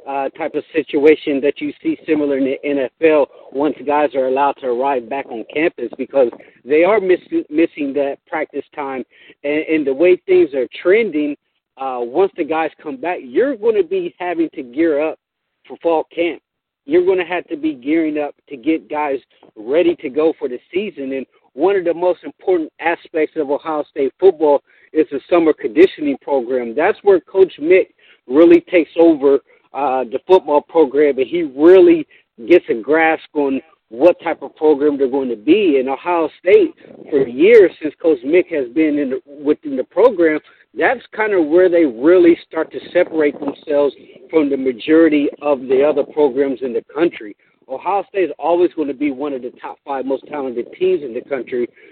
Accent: American